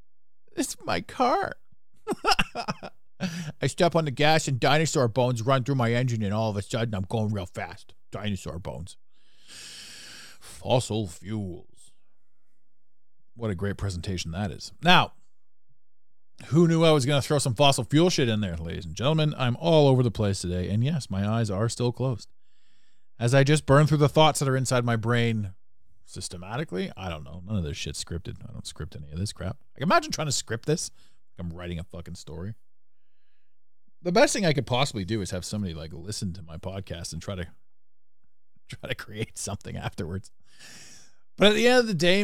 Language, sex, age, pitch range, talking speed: English, male, 40-59, 100-155 Hz, 190 wpm